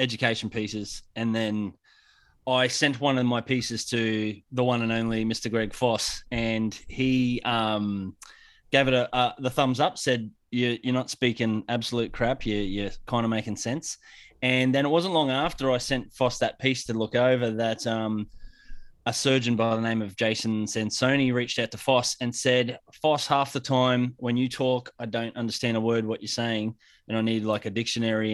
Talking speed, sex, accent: 195 wpm, male, Australian